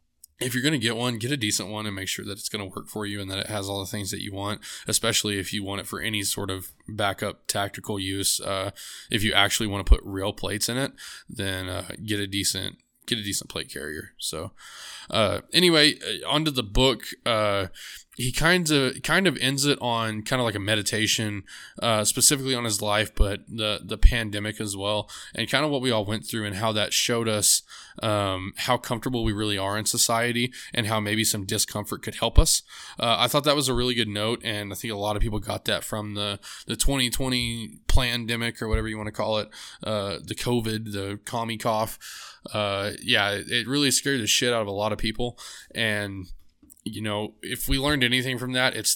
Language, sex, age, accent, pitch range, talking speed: English, male, 20-39, American, 100-125 Hz, 225 wpm